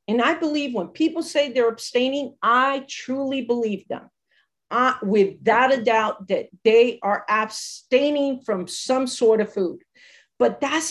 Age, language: 50-69, English